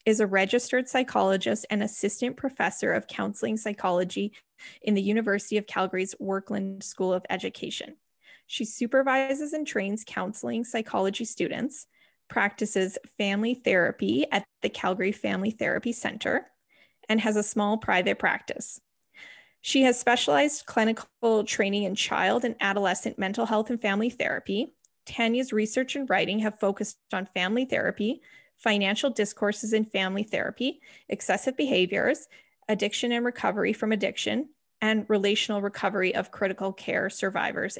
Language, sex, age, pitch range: English, female, 10-29, 200-255 Hz